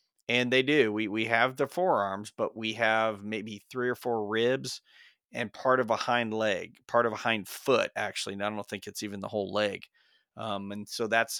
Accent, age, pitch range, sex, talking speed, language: American, 30-49, 100-120 Hz, male, 215 wpm, English